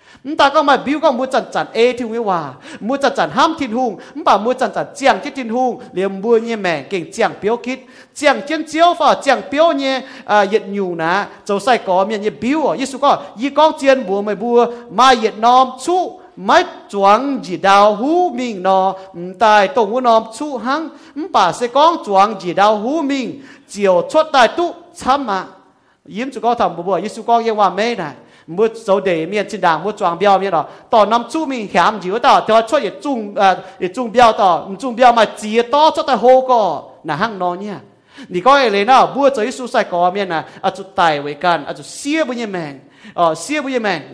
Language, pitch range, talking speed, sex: English, 195-275 Hz, 45 wpm, male